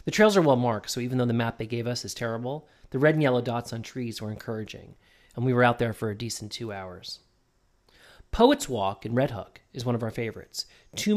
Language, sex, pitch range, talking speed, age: English, male, 110-135 Hz, 240 wpm, 40-59